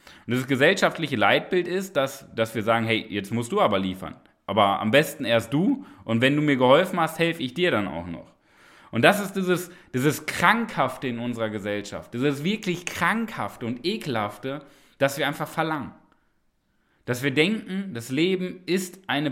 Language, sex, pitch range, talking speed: German, male, 130-180 Hz, 180 wpm